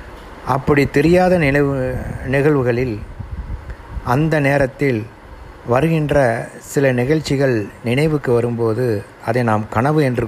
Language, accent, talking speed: Tamil, native, 90 wpm